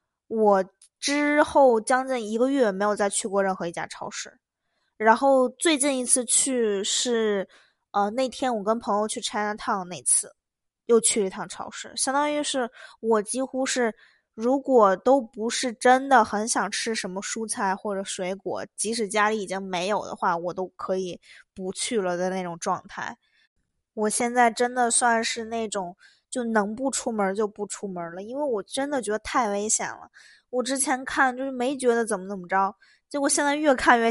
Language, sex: Chinese, female